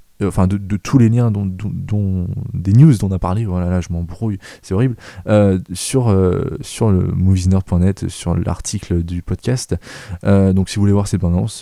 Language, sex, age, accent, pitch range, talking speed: French, male, 20-39, French, 90-110 Hz, 180 wpm